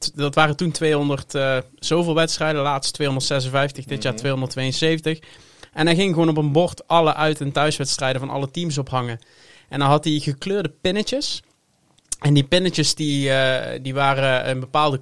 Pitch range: 135-165 Hz